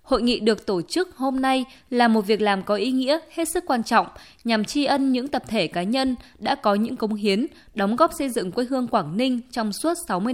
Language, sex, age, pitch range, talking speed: Vietnamese, female, 20-39, 205-265 Hz, 245 wpm